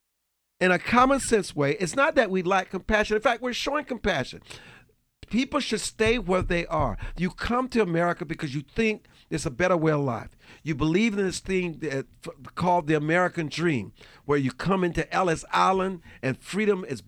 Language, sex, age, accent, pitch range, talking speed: English, male, 50-69, American, 155-215 Hz, 195 wpm